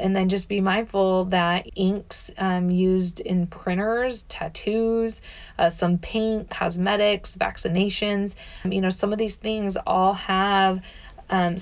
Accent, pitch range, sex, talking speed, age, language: American, 180-200 Hz, female, 135 wpm, 20-39, English